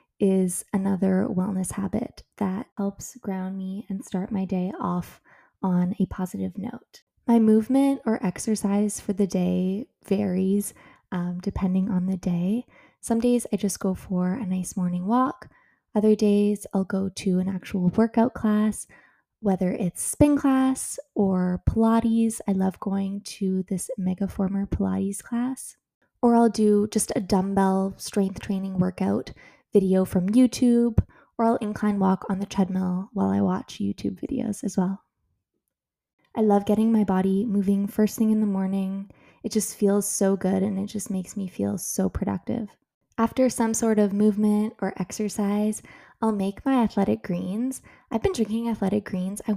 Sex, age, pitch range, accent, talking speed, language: female, 20-39, 190-225 Hz, American, 160 wpm, English